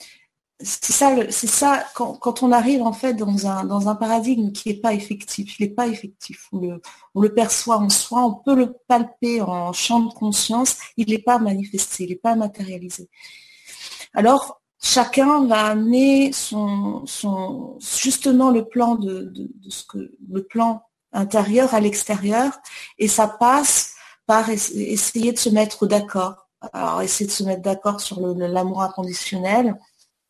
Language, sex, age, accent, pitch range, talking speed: French, female, 40-59, French, 205-250 Hz, 165 wpm